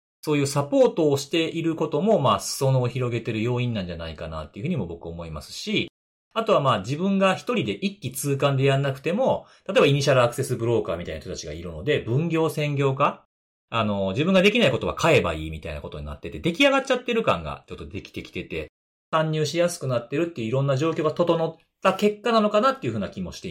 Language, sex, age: Japanese, male, 40-59